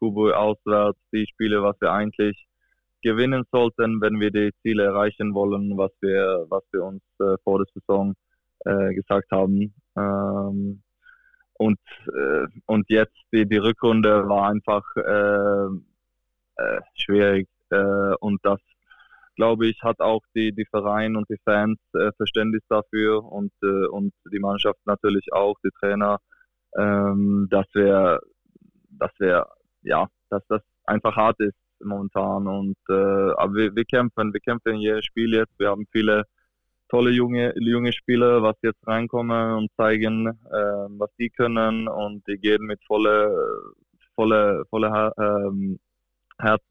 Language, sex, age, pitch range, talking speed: German, male, 20-39, 100-110 Hz, 140 wpm